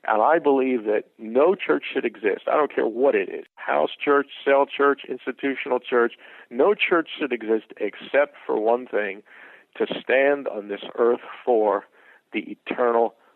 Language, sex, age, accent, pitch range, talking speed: English, male, 50-69, American, 115-185 Hz, 160 wpm